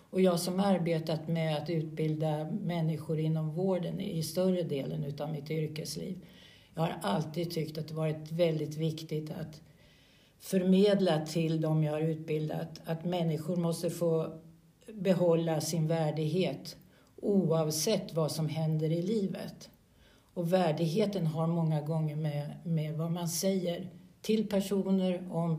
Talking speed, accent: 140 wpm, native